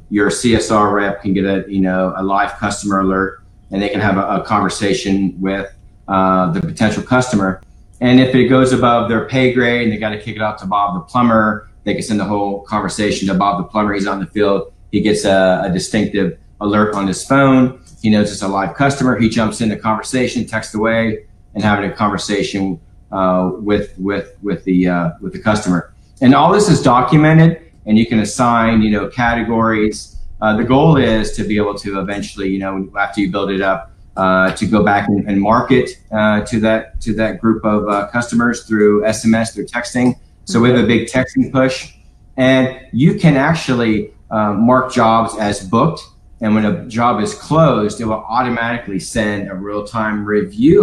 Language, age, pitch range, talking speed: English, 40-59, 100-115 Hz, 200 wpm